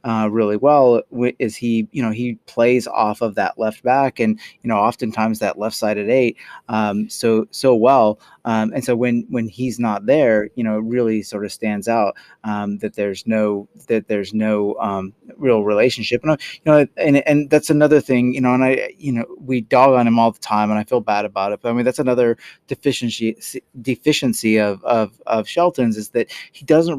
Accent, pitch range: American, 110-135 Hz